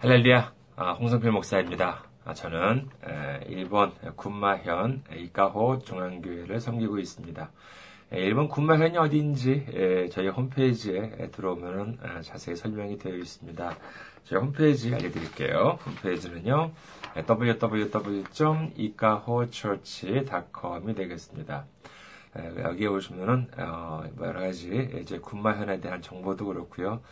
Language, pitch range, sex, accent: Korean, 90-125 Hz, male, native